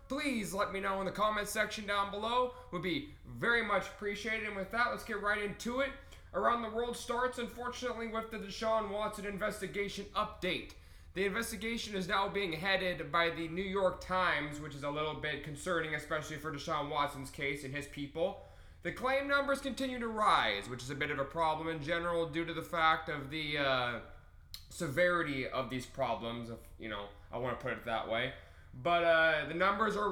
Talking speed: 195 wpm